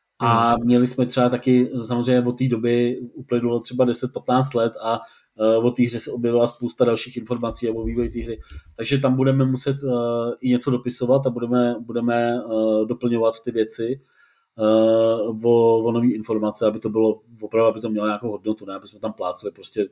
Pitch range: 105-125 Hz